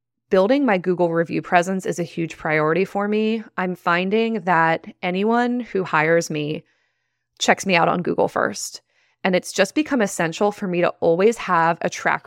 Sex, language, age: female, English, 20-39